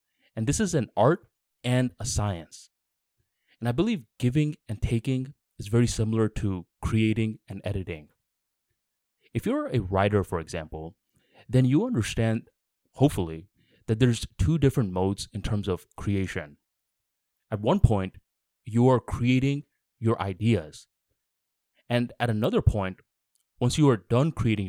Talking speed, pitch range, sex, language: 140 wpm, 95-125 Hz, male, English